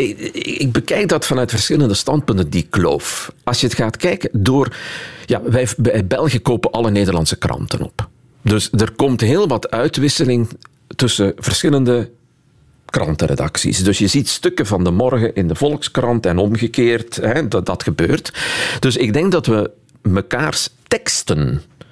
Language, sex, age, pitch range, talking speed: Dutch, male, 50-69, 95-135 Hz, 150 wpm